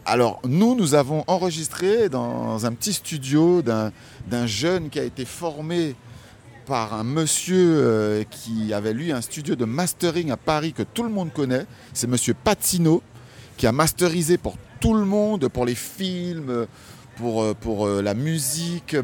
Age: 40-59